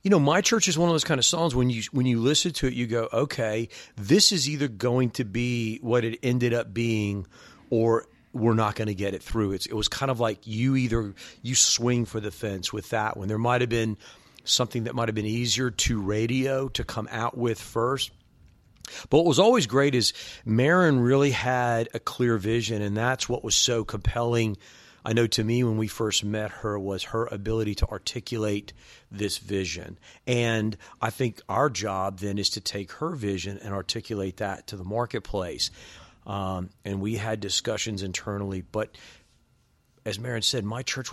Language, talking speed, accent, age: English, 200 wpm, American, 40-59